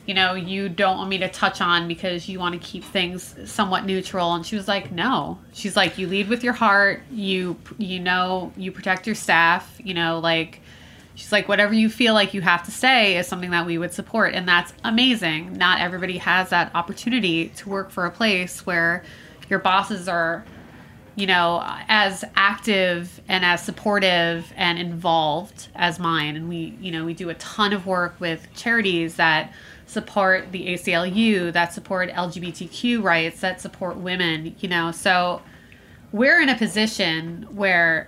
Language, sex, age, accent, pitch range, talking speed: English, female, 20-39, American, 170-200 Hz, 180 wpm